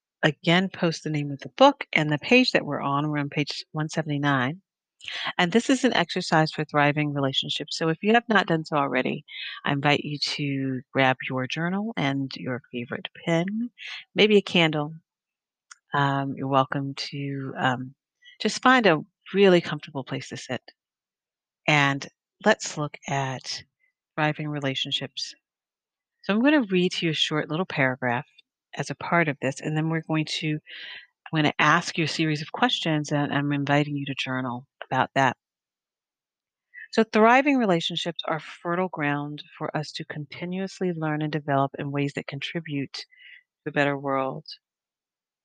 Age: 40-59